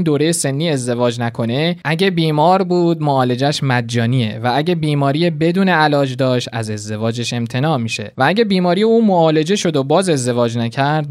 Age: 20-39